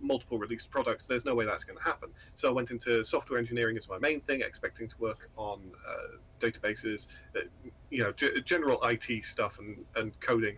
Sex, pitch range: male, 110-125 Hz